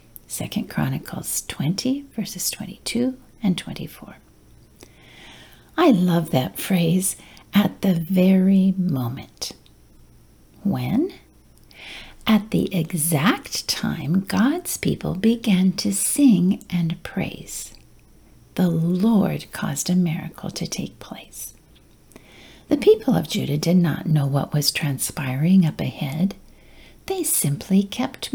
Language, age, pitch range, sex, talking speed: English, 60-79, 175-260 Hz, female, 105 wpm